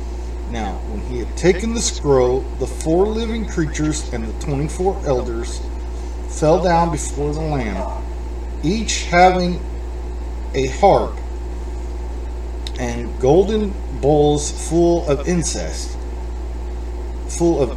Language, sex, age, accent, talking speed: English, male, 40-59, American, 110 wpm